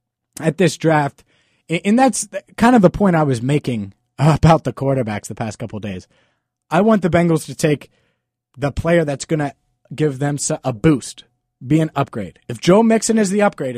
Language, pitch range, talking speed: English, 125-180 Hz, 185 wpm